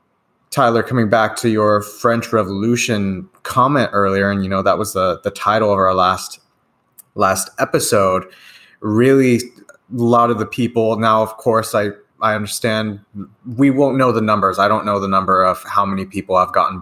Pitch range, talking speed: 100-120 Hz, 180 wpm